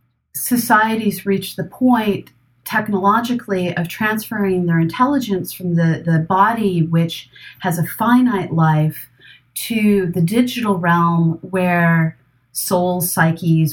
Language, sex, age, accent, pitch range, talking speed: English, female, 30-49, American, 150-200 Hz, 110 wpm